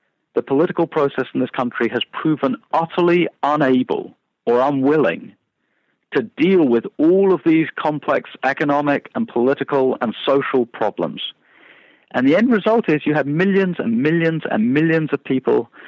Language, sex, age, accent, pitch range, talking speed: English, male, 50-69, British, 135-180 Hz, 145 wpm